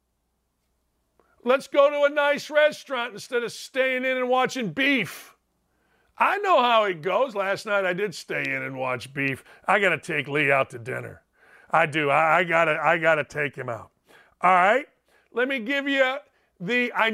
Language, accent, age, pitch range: English, American, 50-69, 180-260 Hz